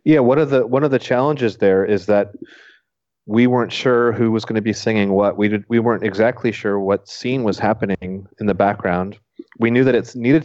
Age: 30-49